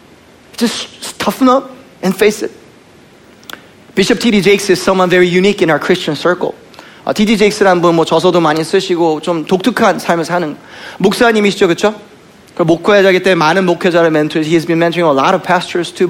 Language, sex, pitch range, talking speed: English, male, 170-220 Hz, 175 wpm